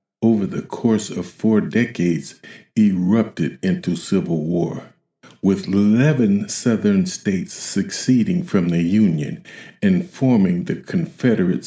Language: English